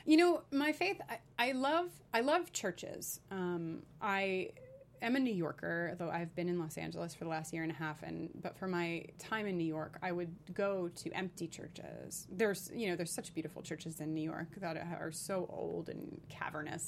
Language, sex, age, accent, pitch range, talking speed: English, female, 30-49, American, 170-205 Hz, 210 wpm